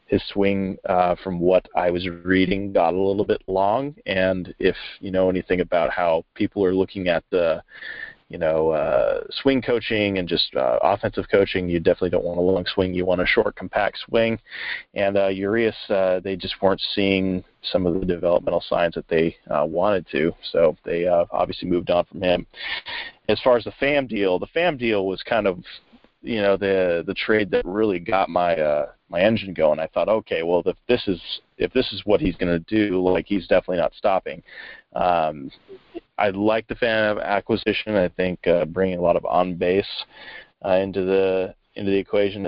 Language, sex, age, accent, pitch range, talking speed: English, male, 30-49, American, 90-105 Hz, 200 wpm